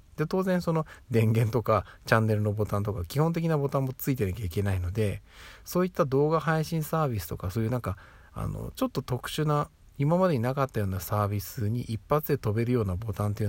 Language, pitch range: Japanese, 95-135 Hz